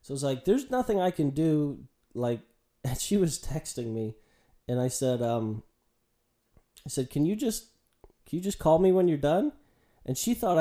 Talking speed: 200 wpm